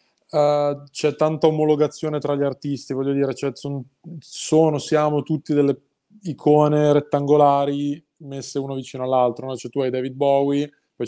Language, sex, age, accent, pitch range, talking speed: Italian, male, 20-39, native, 135-155 Hz, 150 wpm